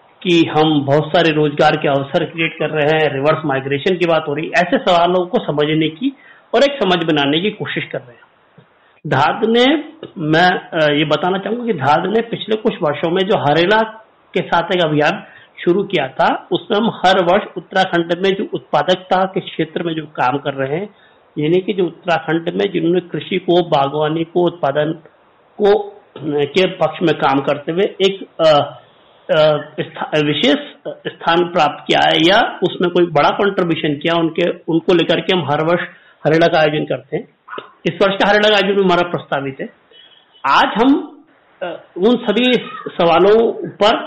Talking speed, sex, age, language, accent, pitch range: 145 wpm, male, 50-69, Hindi, native, 155-200 Hz